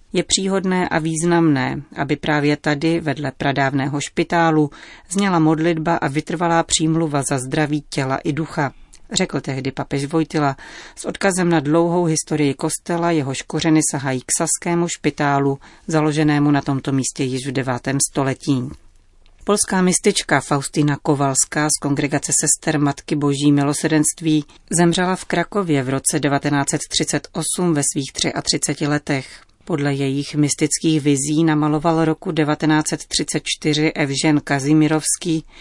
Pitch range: 140-165 Hz